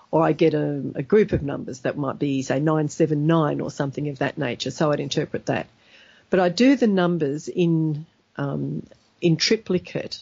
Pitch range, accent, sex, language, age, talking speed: 150-180 Hz, Australian, female, English, 50-69, 180 wpm